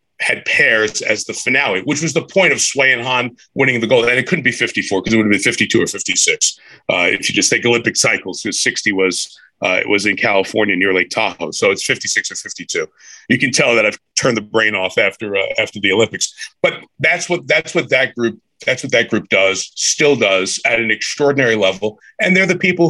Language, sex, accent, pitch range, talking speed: English, male, American, 110-165 Hz, 230 wpm